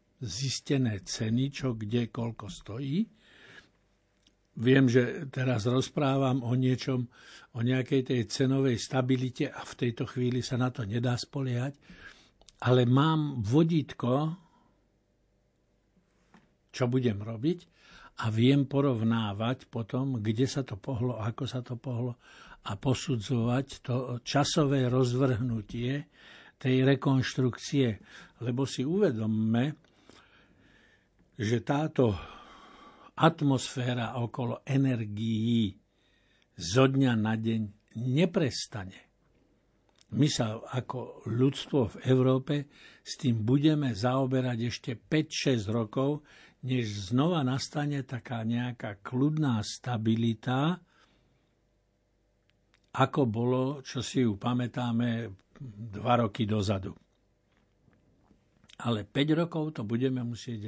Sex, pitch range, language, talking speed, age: male, 115-135 Hz, Slovak, 100 wpm, 60-79